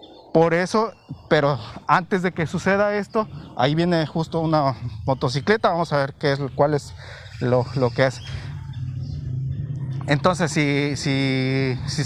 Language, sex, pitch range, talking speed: Spanish, male, 130-170 Hz, 140 wpm